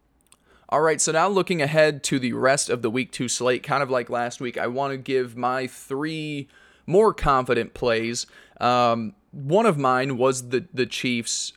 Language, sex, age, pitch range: English, male, 20-39, 120-140 Hz